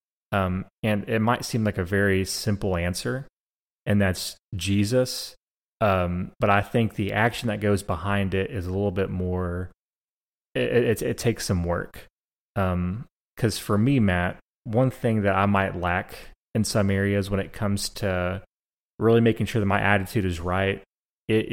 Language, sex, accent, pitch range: English, male, American, 95-110 Hz